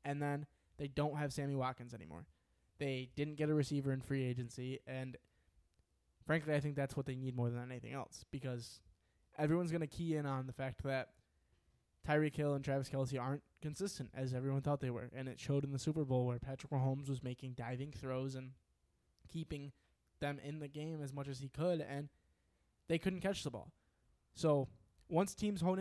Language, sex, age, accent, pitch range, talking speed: English, male, 20-39, American, 125-160 Hz, 200 wpm